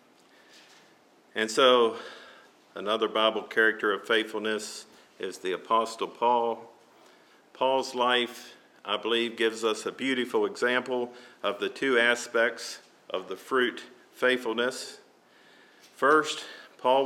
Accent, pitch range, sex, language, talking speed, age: American, 120-165 Hz, male, English, 105 wpm, 50-69